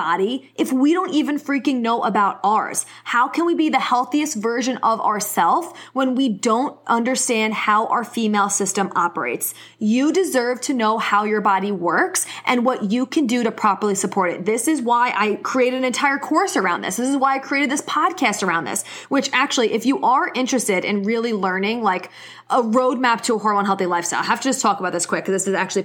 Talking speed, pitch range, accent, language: 215 wpm, 210-260 Hz, American, English